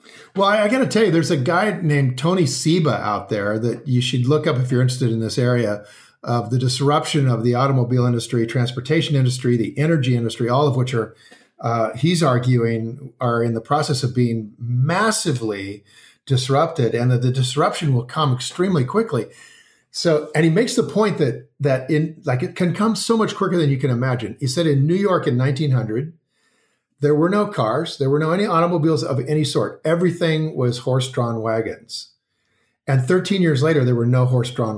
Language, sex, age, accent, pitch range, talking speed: English, male, 50-69, American, 120-155 Hz, 195 wpm